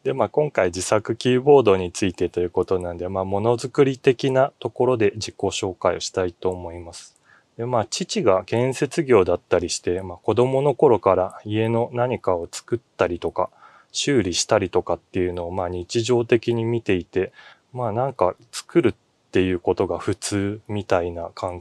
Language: Japanese